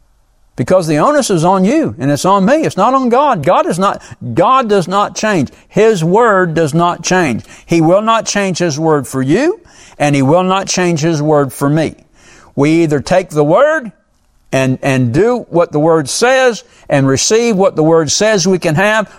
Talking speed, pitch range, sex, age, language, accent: 200 wpm, 155-205 Hz, male, 60-79, English, American